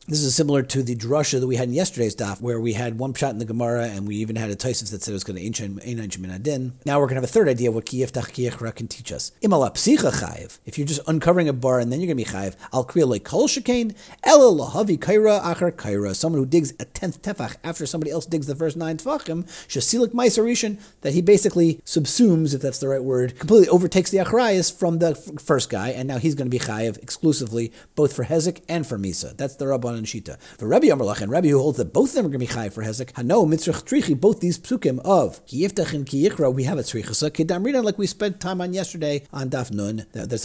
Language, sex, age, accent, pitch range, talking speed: English, male, 40-59, American, 115-170 Hz, 240 wpm